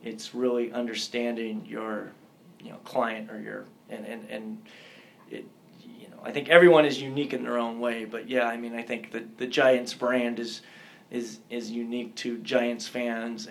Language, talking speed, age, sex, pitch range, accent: English, 180 wpm, 30-49, male, 115-130 Hz, American